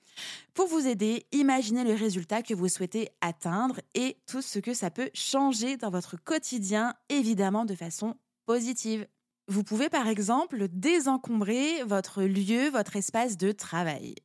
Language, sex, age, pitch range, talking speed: French, female, 20-39, 185-245 Hz, 145 wpm